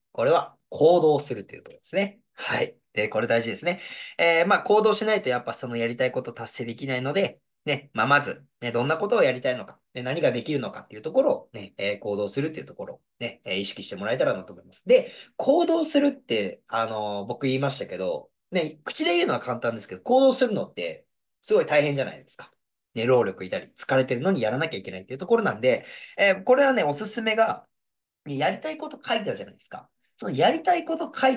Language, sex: Japanese, male